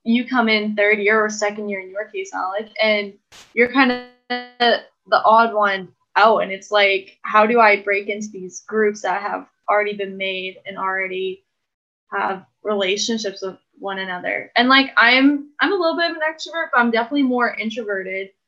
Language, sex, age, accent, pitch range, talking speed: English, female, 10-29, American, 200-240 Hz, 190 wpm